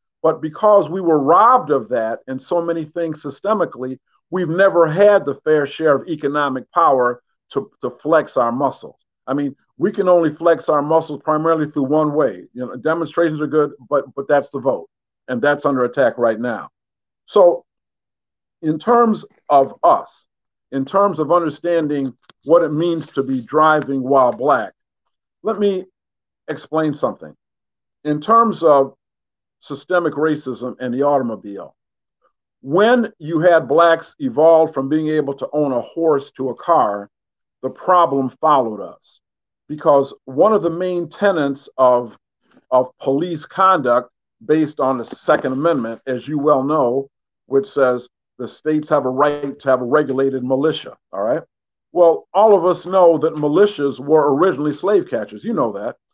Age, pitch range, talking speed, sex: 50-69, 135-170 Hz, 160 wpm, male